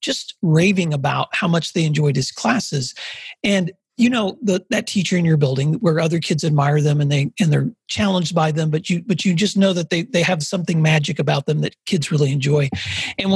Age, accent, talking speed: 40-59, American, 220 wpm